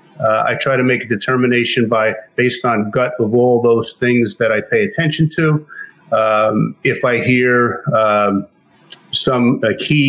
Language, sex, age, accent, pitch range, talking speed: English, male, 50-69, American, 115-130 Hz, 165 wpm